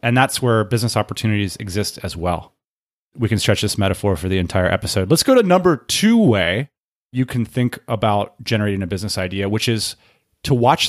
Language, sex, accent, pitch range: English, male, American, 110-150 Hz